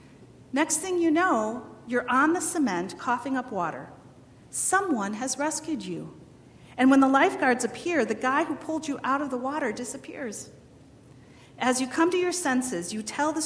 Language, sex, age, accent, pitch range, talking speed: English, female, 40-59, American, 220-330 Hz, 175 wpm